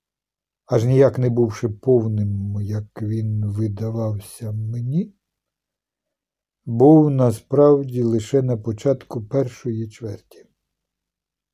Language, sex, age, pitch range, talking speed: Ukrainian, male, 60-79, 105-145 Hz, 85 wpm